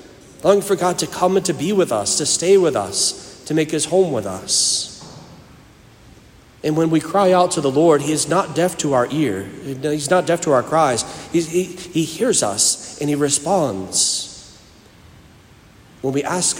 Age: 40-59